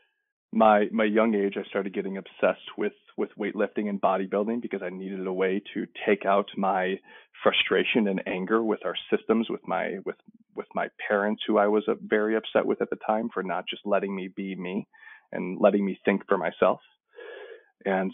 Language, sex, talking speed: English, male, 190 wpm